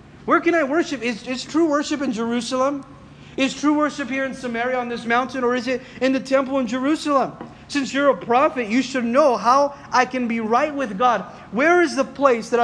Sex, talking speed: male, 220 wpm